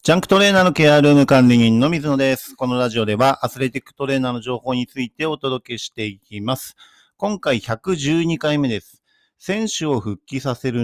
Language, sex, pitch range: Japanese, male, 105-130 Hz